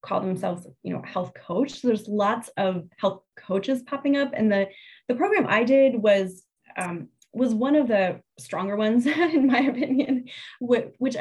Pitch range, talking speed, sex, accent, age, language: 185-240 Hz, 175 wpm, female, American, 20-39, English